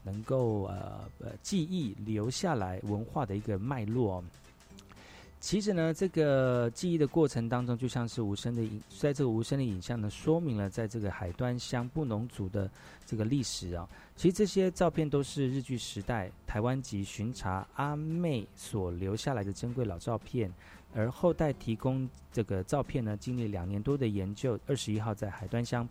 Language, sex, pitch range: Chinese, male, 100-135 Hz